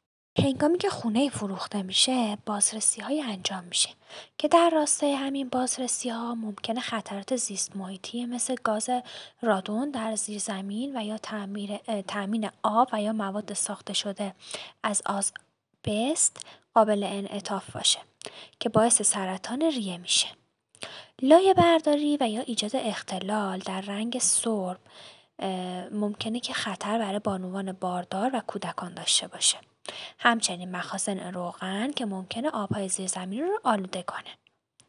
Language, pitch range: Persian, 195-250 Hz